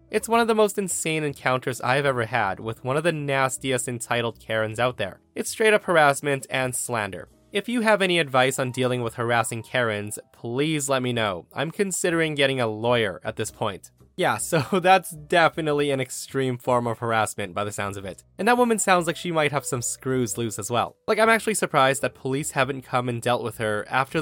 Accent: American